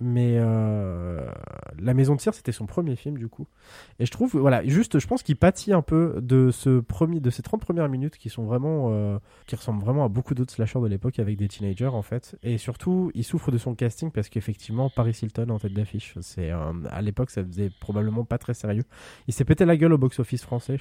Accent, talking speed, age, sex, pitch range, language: French, 235 wpm, 20-39, male, 105-140 Hz, French